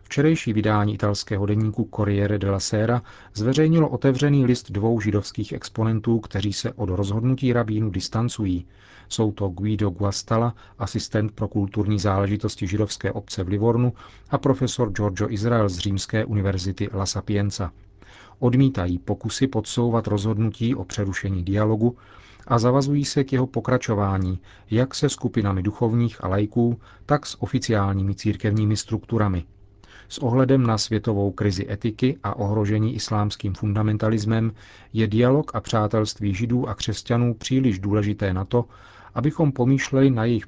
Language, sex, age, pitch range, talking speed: Czech, male, 40-59, 100-115 Hz, 130 wpm